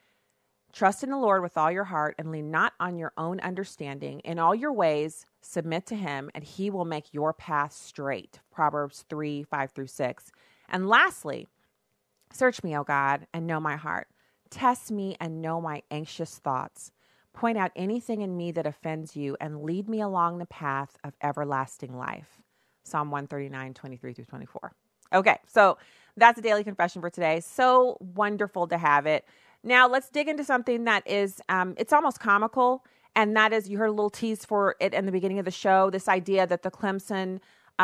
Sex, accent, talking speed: female, American, 185 wpm